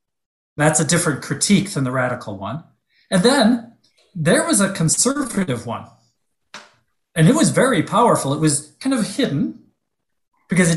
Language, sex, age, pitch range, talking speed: English, male, 40-59, 155-215 Hz, 150 wpm